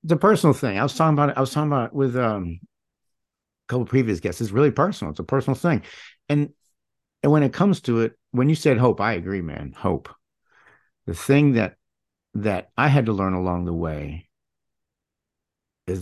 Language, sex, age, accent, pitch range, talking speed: English, male, 50-69, American, 90-115 Hz, 205 wpm